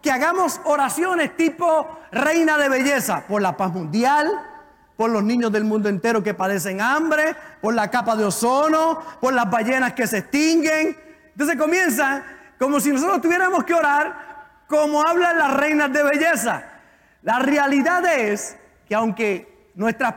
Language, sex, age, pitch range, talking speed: Spanish, male, 40-59, 240-310 Hz, 150 wpm